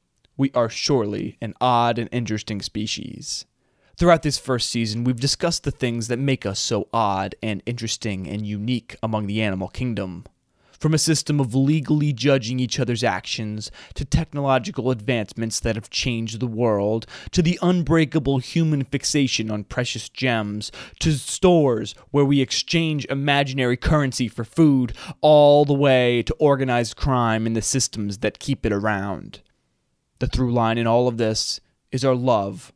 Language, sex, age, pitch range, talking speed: English, male, 20-39, 110-135 Hz, 155 wpm